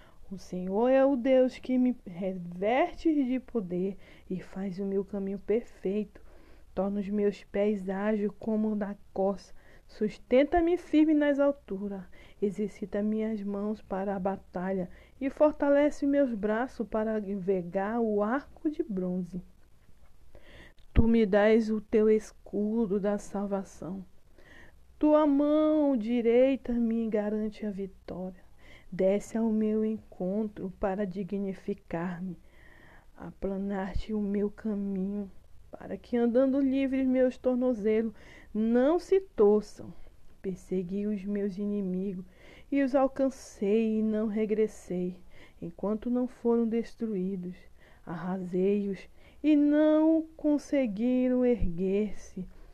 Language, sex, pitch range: Portuguese, female, 195-245 Hz